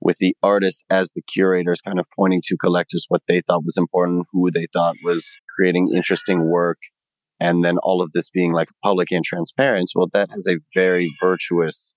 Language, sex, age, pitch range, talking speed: English, male, 30-49, 85-95 Hz, 195 wpm